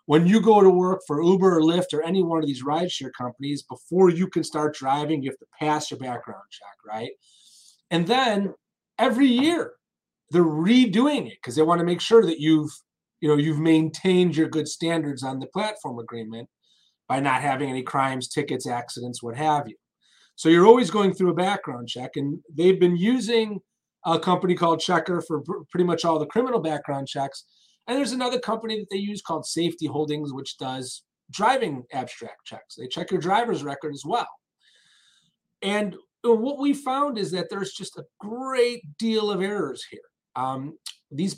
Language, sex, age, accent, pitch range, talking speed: English, male, 30-49, American, 150-205 Hz, 180 wpm